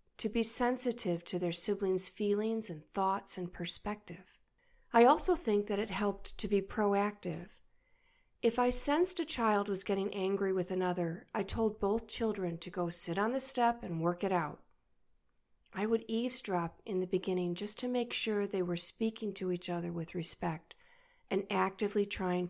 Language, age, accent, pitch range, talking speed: English, 50-69, American, 180-225 Hz, 175 wpm